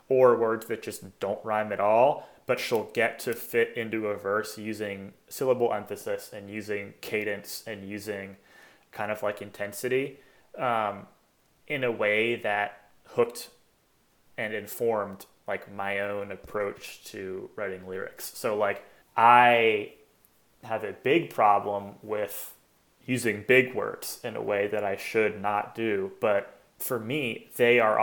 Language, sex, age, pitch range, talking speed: English, male, 30-49, 100-120 Hz, 145 wpm